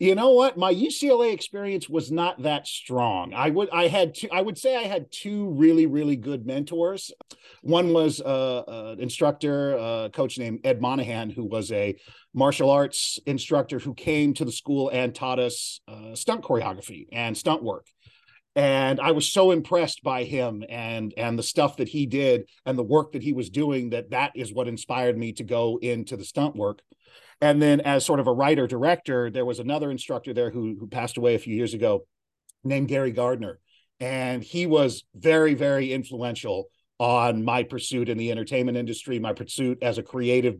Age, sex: 40-59, male